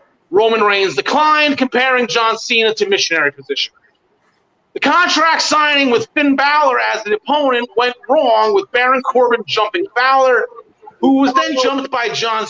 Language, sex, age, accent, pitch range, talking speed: English, male, 40-59, American, 220-300 Hz, 150 wpm